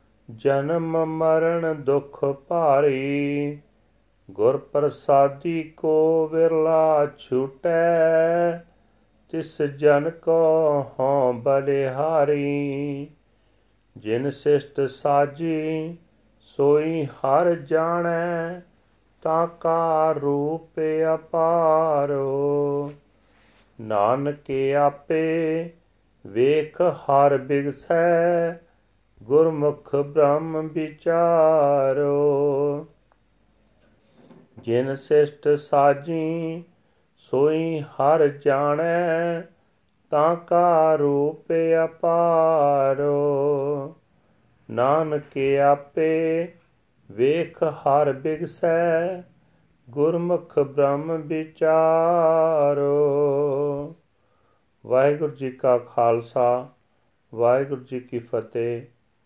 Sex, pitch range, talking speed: male, 140-160 Hz, 55 wpm